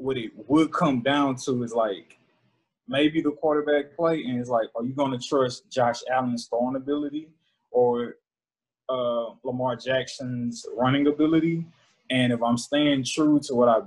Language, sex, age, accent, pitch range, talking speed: English, male, 20-39, American, 115-145 Hz, 160 wpm